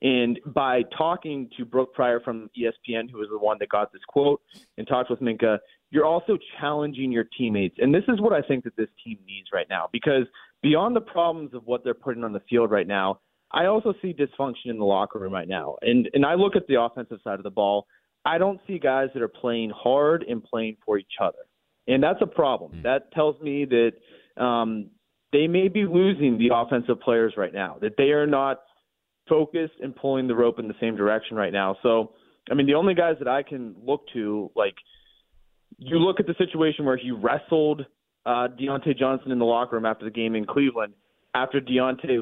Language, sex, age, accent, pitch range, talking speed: English, male, 30-49, American, 115-150 Hz, 215 wpm